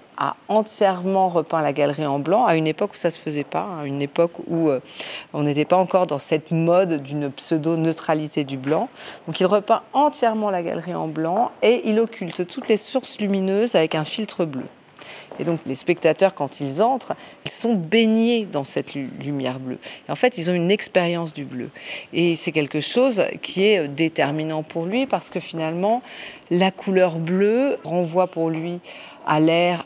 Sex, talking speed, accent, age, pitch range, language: female, 190 wpm, French, 40-59, 155-195 Hz, French